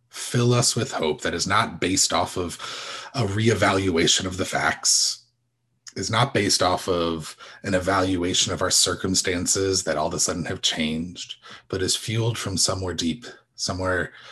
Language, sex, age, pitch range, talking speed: English, male, 30-49, 90-120 Hz, 165 wpm